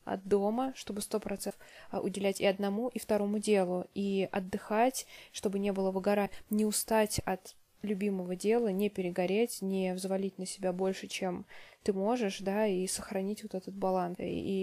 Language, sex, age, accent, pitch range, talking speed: Russian, female, 20-39, native, 190-215 Hz, 155 wpm